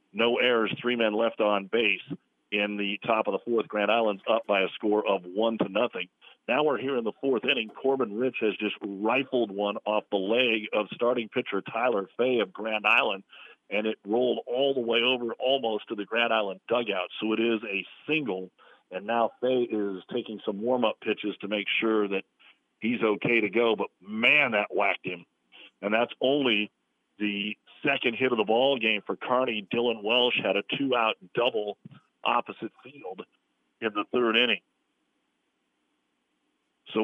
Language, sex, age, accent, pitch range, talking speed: English, male, 50-69, American, 105-125 Hz, 180 wpm